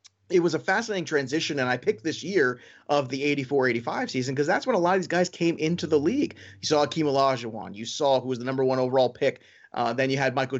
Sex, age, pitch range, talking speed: male, 30-49, 125-155 Hz, 250 wpm